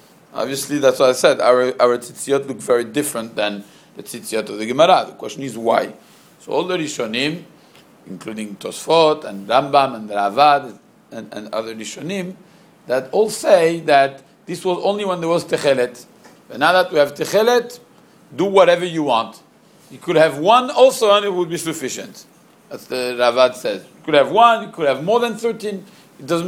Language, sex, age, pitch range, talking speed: English, male, 50-69, 135-195 Hz, 185 wpm